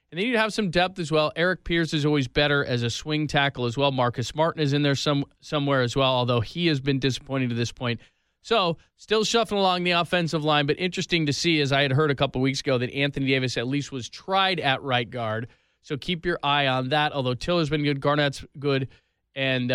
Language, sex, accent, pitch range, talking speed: English, male, American, 130-165 Hz, 235 wpm